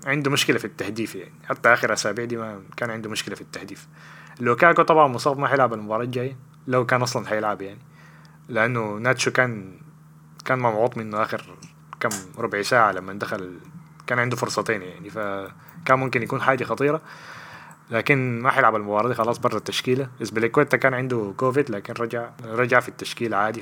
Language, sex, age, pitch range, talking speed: Arabic, male, 20-39, 110-145 Hz, 175 wpm